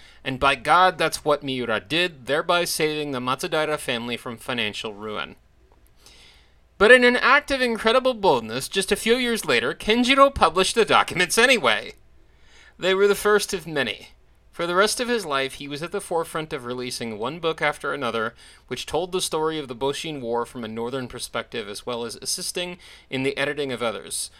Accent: American